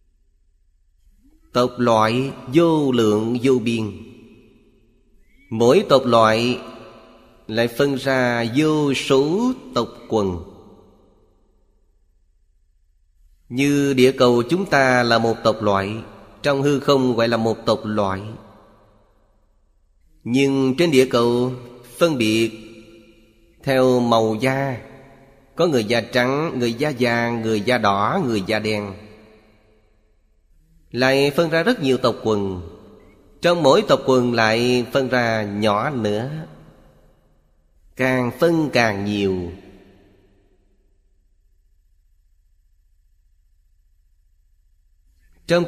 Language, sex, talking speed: Vietnamese, male, 100 wpm